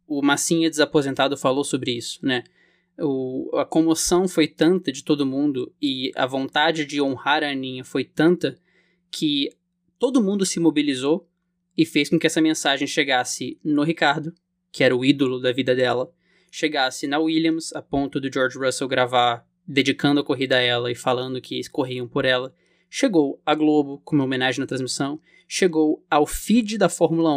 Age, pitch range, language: 20-39, 135-170 Hz, Portuguese